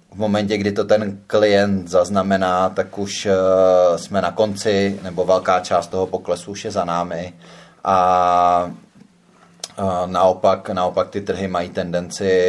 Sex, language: male, Czech